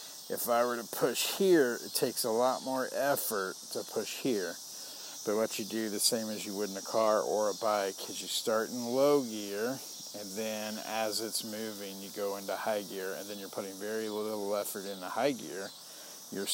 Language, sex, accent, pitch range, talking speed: English, male, American, 95-110 Hz, 205 wpm